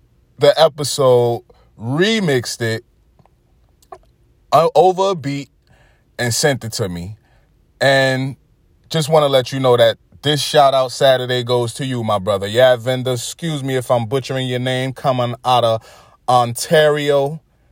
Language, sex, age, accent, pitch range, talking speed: English, male, 20-39, American, 120-150 Hz, 140 wpm